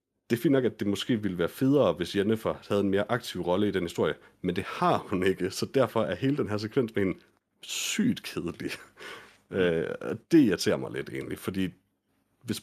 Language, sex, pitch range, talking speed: Danish, male, 95-115 Hz, 205 wpm